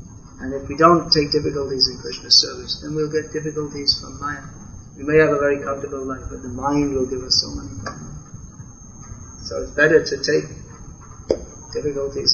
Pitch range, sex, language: 110-145 Hz, male, English